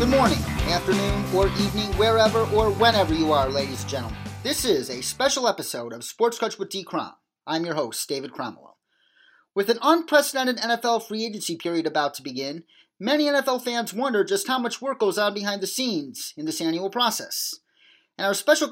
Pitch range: 170-255 Hz